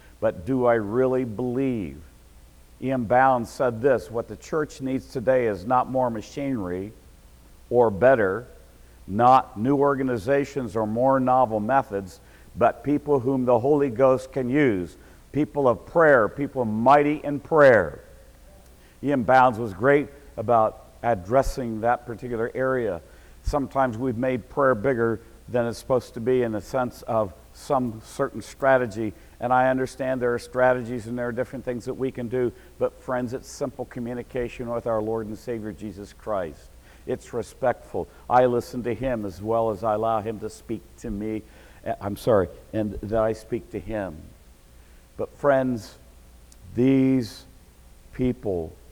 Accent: American